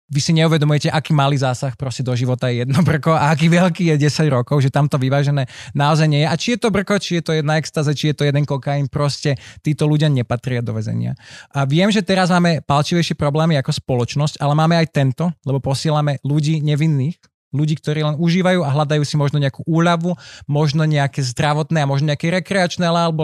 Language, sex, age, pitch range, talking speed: Slovak, male, 20-39, 130-155 Hz, 205 wpm